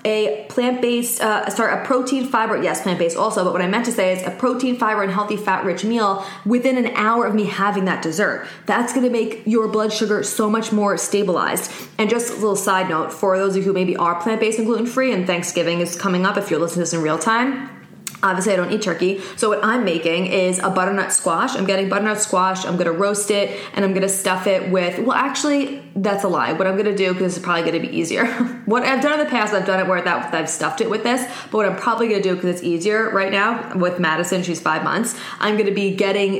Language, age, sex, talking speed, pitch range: English, 20-39, female, 255 wpm, 185-220 Hz